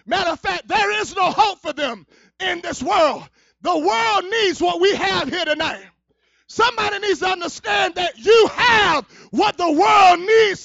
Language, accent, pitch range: English, American, 235-335 Hz